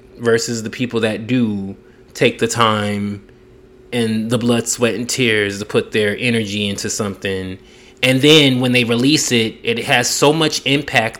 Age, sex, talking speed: 20-39, male, 165 wpm